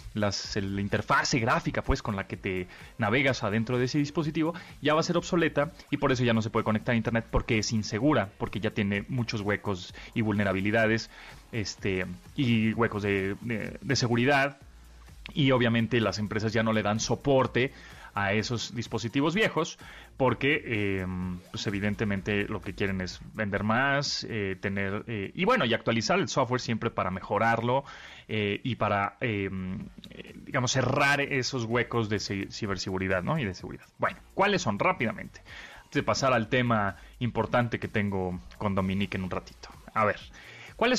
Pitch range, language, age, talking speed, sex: 105-140 Hz, Spanish, 30-49, 165 wpm, male